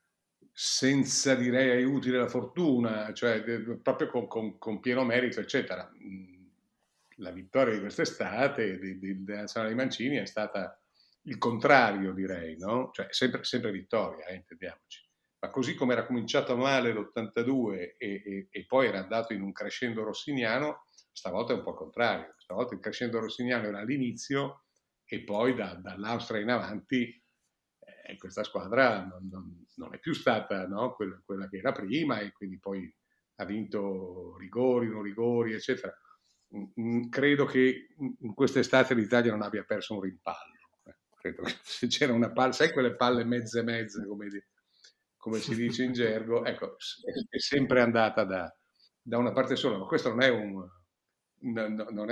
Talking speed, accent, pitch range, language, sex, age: 155 wpm, native, 100-125 Hz, Italian, male, 50-69